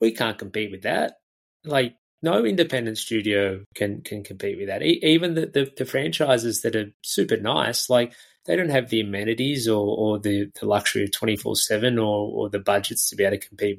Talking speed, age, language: 200 wpm, 20-39, English